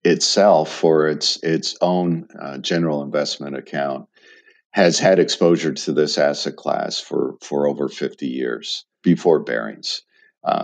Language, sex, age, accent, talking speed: English, male, 50-69, American, 135 wpm